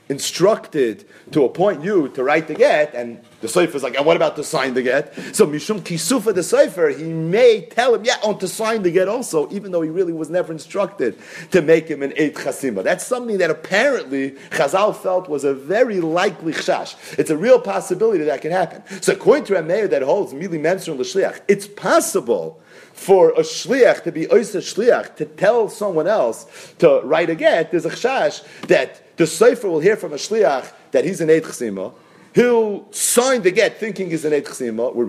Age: 40-59